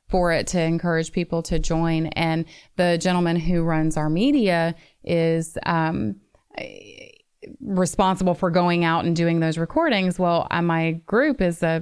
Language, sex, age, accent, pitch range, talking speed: English, female, 30-49, American, 165-190 Hz, 145 wpm